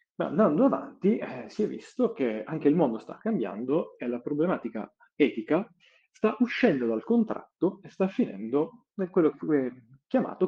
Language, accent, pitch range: Italian, native, 115-165 Hz